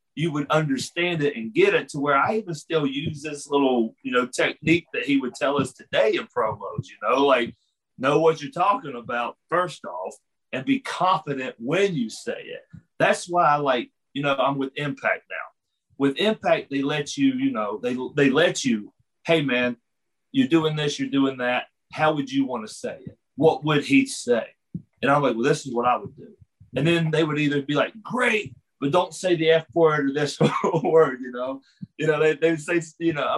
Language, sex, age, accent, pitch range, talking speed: English, male, 40-59, American, 140-200 Hz, 215 wpm